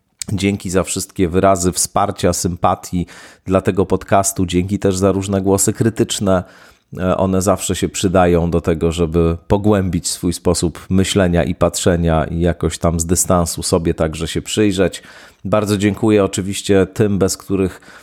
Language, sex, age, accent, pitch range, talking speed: Polish, male, 30-49, native, 85-100 Hz, 145 wpm